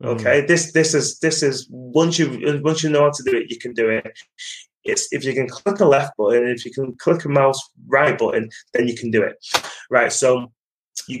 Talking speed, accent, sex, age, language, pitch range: 230 wpm, British, male, 20-39, English, 120-155 Hz